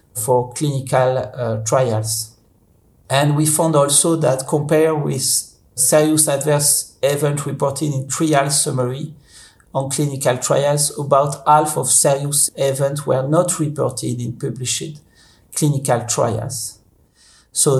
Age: 50-69